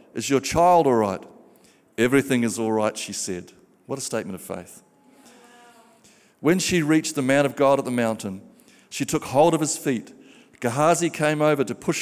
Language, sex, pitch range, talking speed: English, male, 125-150 Hz, 185 wpm